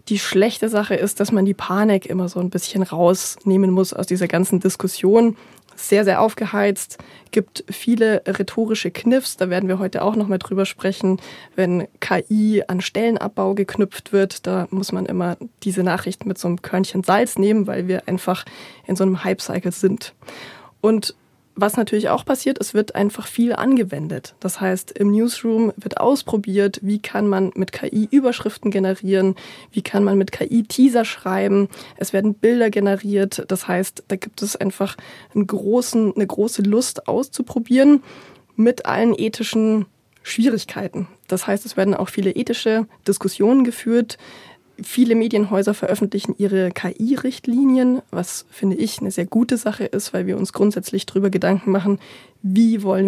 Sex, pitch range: female, 190-220 Hz